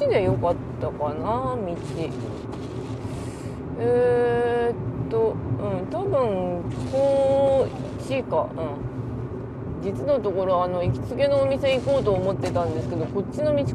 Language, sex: Japanese, female